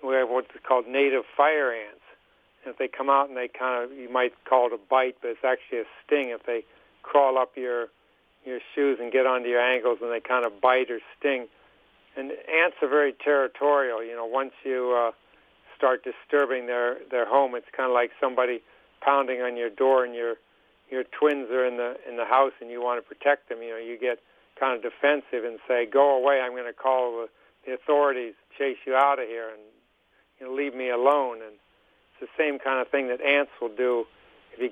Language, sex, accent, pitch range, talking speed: English, male, American, 125-140 Hz, 215 wpm